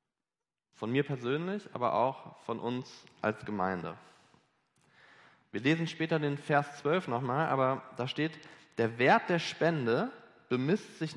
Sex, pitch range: male, 115-155 Hz